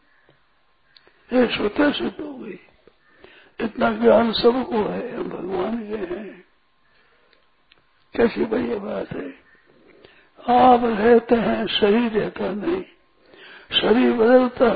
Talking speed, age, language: 95 wpm, 60-79, Hindi